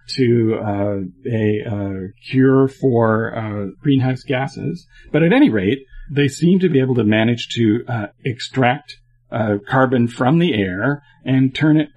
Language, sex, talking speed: English, male, 155 wpm